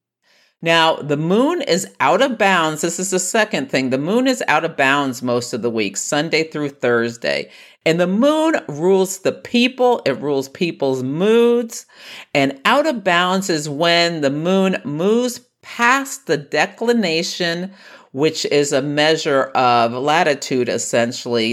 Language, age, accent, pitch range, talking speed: English, 50-69, American, 125-185 Hz, 150 wpm